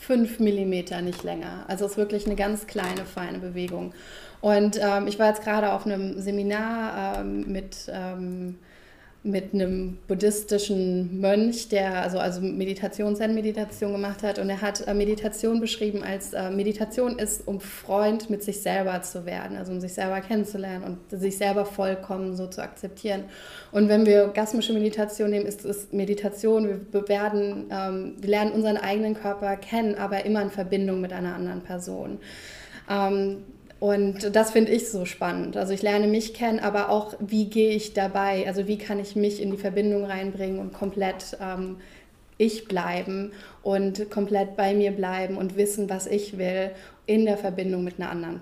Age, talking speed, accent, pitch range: 20-39, 170 wpm, German, 190-210 Hz